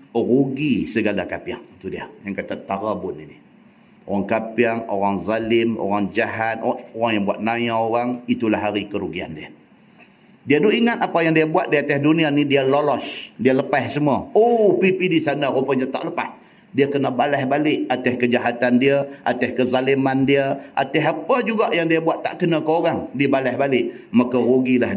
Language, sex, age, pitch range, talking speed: Malay, male, 50-69, 115-145 Hz, 175 wpm